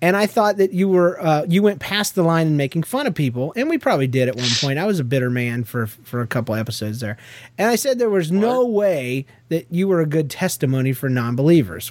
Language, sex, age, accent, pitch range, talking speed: English, male, 30-49, American, 130-185 Hz, 250 wpm